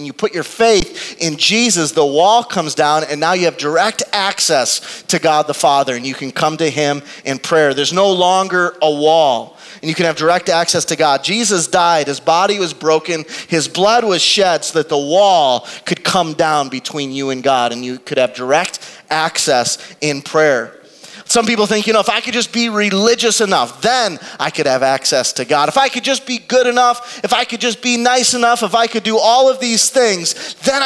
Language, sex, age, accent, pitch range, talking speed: English, male, 30-49, American, 155-225 Hz, 220 wpm